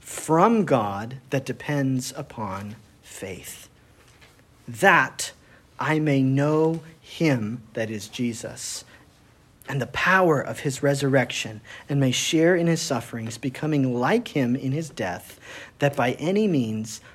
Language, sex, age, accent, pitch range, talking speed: English, male, 40-59, American, 120-160 Hz, 125 wpm